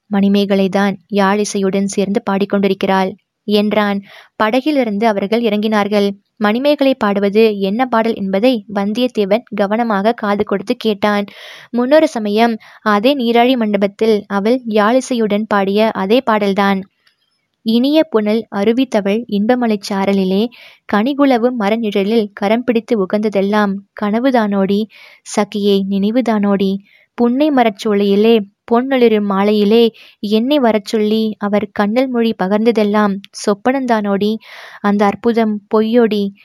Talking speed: 95 wpm